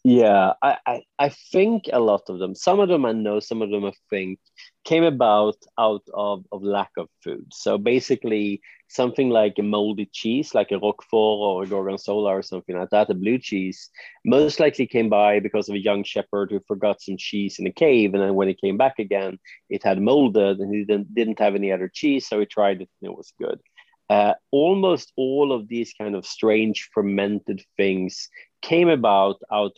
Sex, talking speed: male, 205 wpm